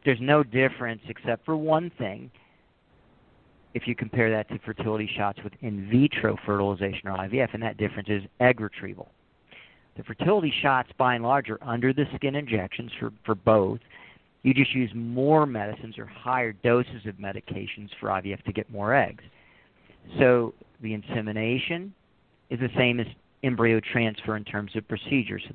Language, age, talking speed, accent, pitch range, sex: English, 50-69, 165 wpm, American, 105-125 Hz, male